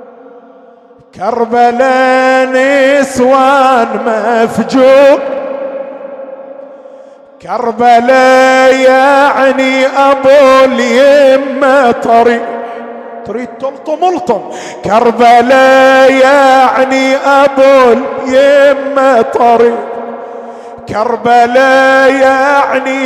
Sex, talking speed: male, 40 wpm